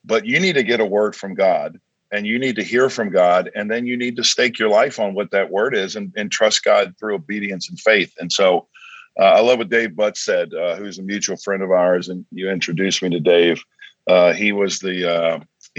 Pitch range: 90-120 Hz